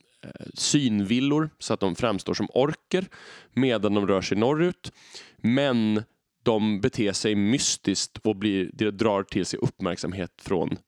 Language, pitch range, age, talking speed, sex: Swedish, 95-130 Hz, 20-39, 140 wpm, male